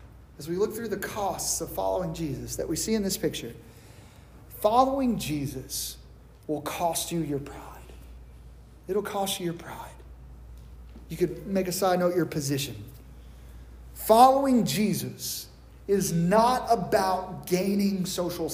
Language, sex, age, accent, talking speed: English, male, 30-49, American, 135 wpm